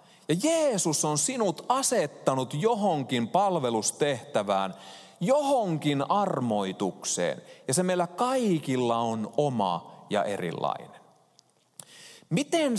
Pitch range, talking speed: 125-210 Hz, 85 wpm